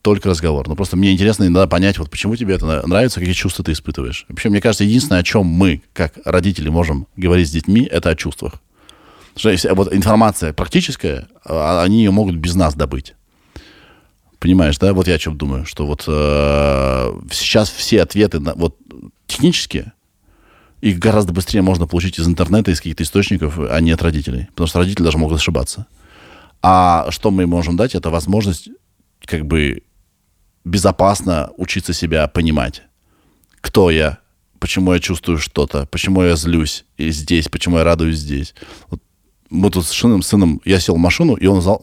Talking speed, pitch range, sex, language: 170 wpm, 80-95 Hz, male, Russian